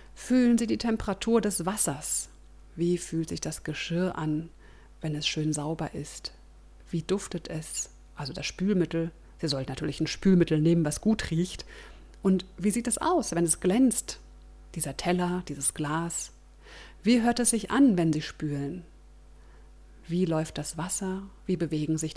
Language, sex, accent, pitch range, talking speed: German, female, German, 155-200 Hz, 160 wpm